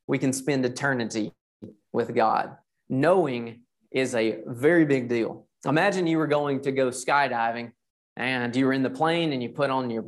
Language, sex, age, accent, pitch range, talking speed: English, male, 30-49, American, 125-155 Hz, 180 wpm